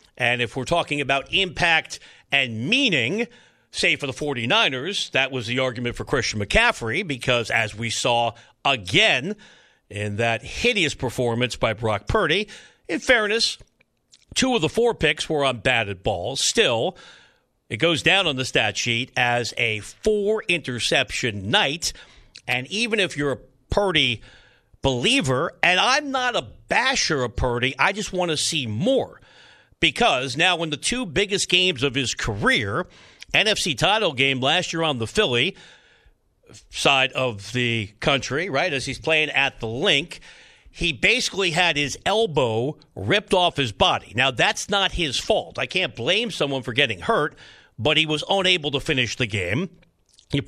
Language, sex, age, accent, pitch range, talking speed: English, male, 50-69, American, 125-180 Hz, 160 wpm